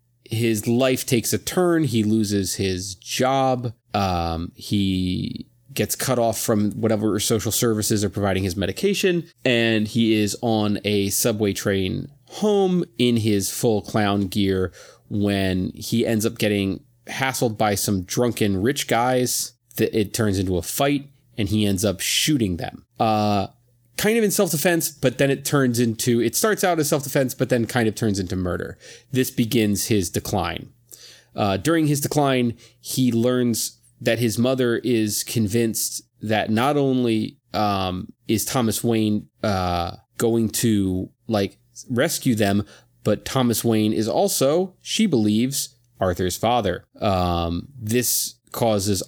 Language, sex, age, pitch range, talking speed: English, male, 30-49, 100-125 Hz, 150 wpm